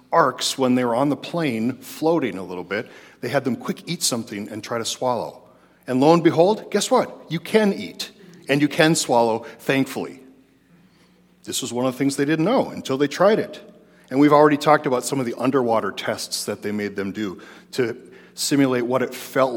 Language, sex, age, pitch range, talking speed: English, male, 40-59, 110-150 Hz, 210 wpm